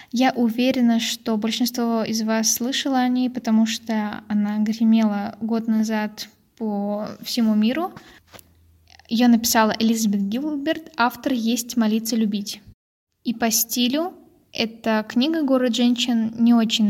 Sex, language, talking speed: female, Russian, 125 wpm